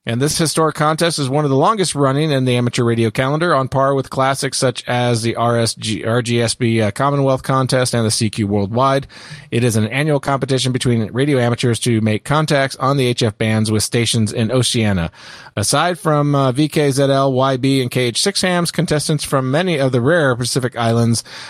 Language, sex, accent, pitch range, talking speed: English, male, American, 115-140 Hz, 185 wpm